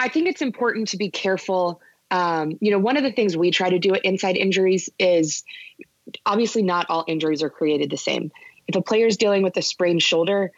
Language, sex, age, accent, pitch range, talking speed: English, female, 20-39, American, 160-200 Hz, 220 wpm